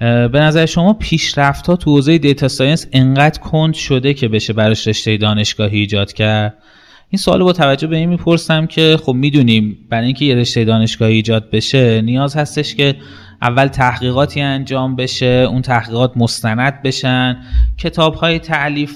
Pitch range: 120-145 Hz